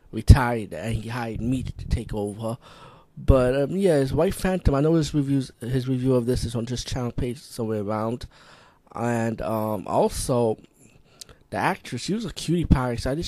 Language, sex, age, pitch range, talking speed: English, male, 20-39, 120-150 Hz, 190 wpm